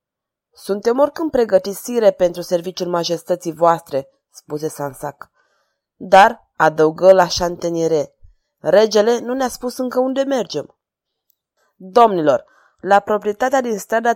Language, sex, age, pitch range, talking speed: Romanian, female, 20-39, 175-230 Hz, 105 wpm